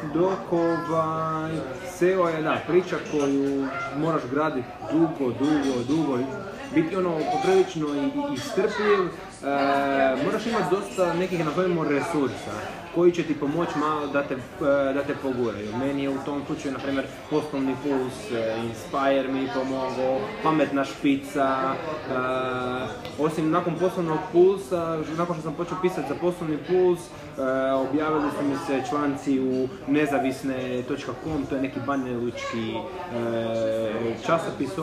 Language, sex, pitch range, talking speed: Croatian, male, 135-175 Hz, 125 wpm